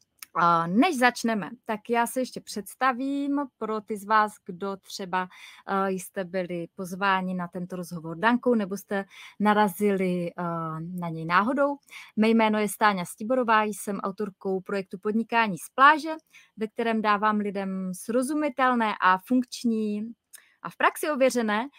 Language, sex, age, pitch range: Czech, female, 20-39, 190-250 Hz